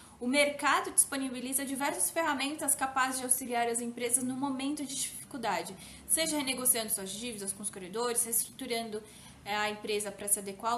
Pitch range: 230-280 Hz